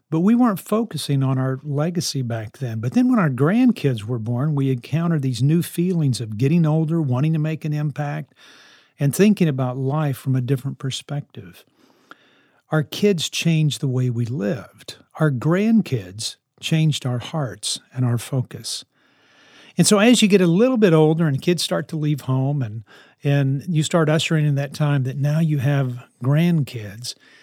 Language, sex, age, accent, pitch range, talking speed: English, male, 50-69, American, 135-170 Hz, 175 wpm